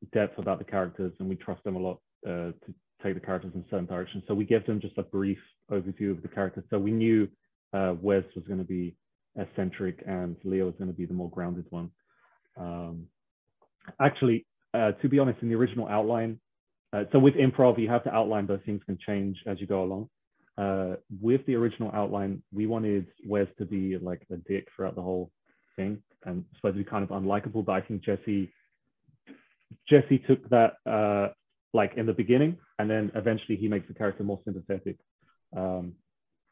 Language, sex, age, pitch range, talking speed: English, male, 30-49, 95-115 Hz, 200 wpm